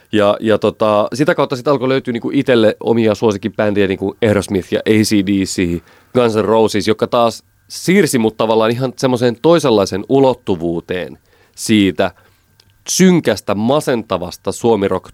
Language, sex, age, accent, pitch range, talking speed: Finnish, male, 30-49, native, 100-130 Hz, 135 wpm